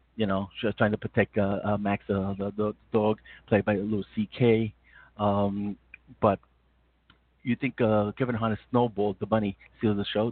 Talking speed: 185 wpm